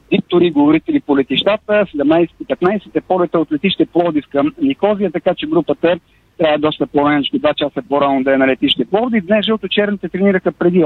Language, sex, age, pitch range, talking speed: Bulgarian, male, 50-69, 150-195 Hz, 170 wpm